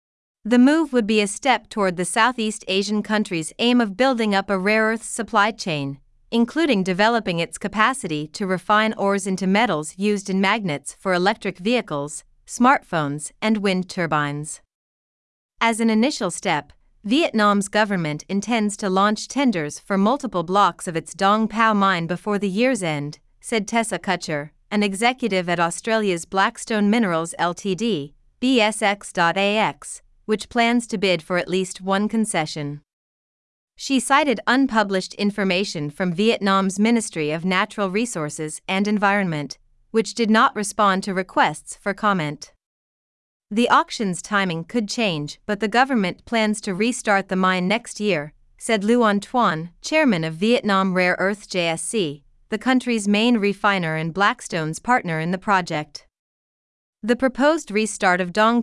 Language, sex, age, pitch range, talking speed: Vietnamese, female, 30-49, 175-225 Hz, 145 wpm